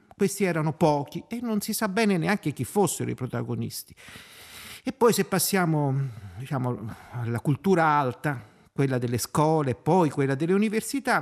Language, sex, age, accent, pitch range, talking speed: Italian, male, 50-69, native, 130-185 Hz, 155 wpm